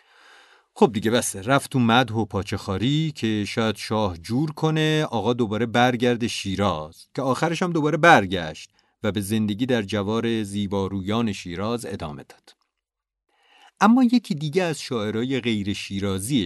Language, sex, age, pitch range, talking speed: Persian, male, 40-59, 100-160 Hz, 135 wpm